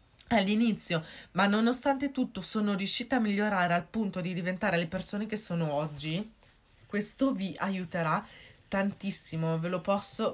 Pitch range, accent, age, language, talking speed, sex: 175-220 Hz, native, 30-49, Italian, 140 wpm, female